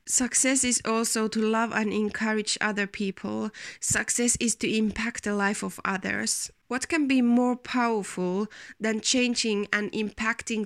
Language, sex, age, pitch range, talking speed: Finnish, female, 20-39, 205-235 Hz, 145 wpm